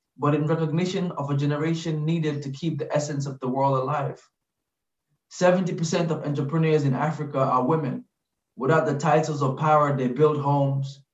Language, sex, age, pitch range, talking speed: English, male, 20-39, 140-160 Hz, 160 wpm